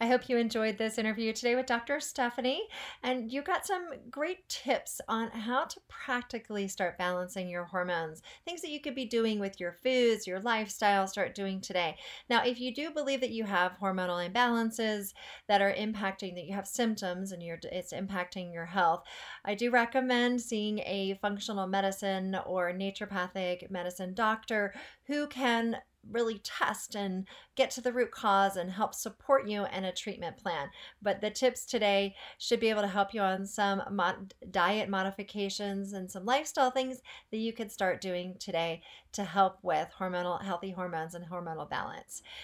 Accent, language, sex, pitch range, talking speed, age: American, English, female, 190-250 Hz, 175 wpm, 30-49